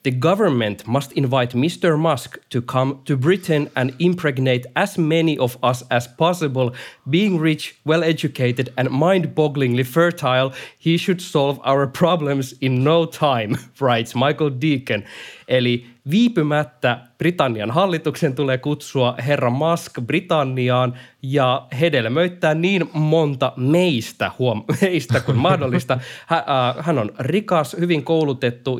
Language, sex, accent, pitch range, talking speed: Finnish, male, native, 120-160 Hz, 120 wpm